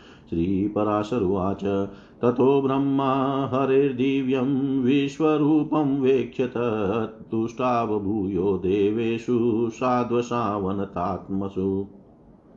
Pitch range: 100-130 Hz